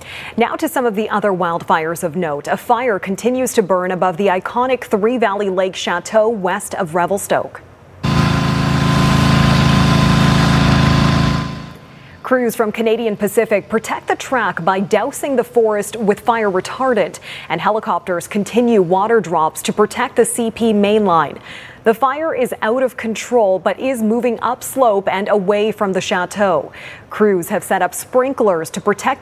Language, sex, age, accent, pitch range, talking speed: English, female, 30-49, American, 190-230 Hz, 145 wpm